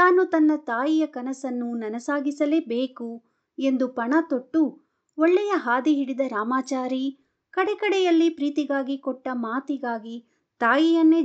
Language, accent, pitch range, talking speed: Kannada, native, 240-300 Hz, 90 wpm